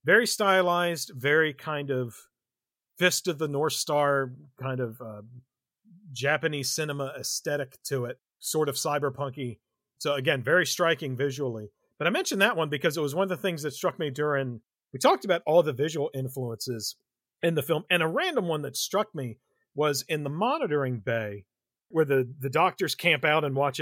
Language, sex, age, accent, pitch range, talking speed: English, male, 40-59, American, 130-175 Hz, 180 wpm